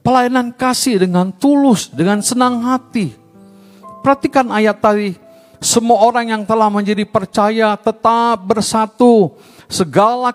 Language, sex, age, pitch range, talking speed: Indonesian, male, 50-69, 145-230 Hz, 110 wpm